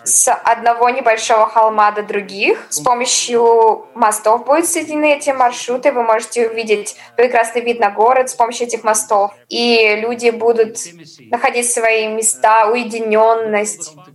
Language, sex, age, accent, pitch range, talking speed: Russian, female, 20-39, native, 215-235 Hz, 130 wpm